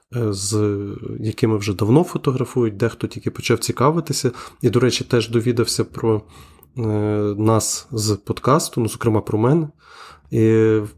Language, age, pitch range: Ukrainian, 20-39, 110-130 Hz